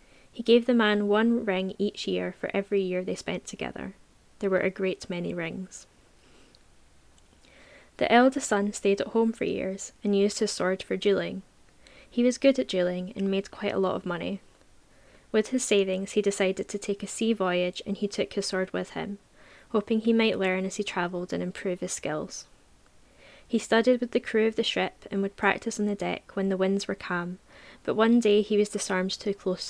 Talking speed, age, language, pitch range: 205 wpm, 10-29, English, 185-220 Hz